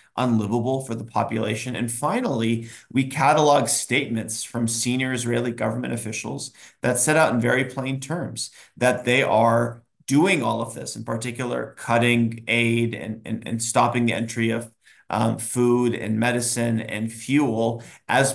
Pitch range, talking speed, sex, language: 115-125 Hz, 150 wpm, male, English